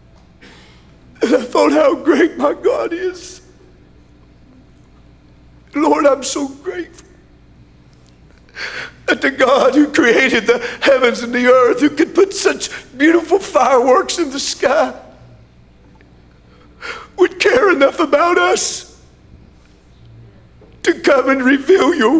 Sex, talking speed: male, 110 wpm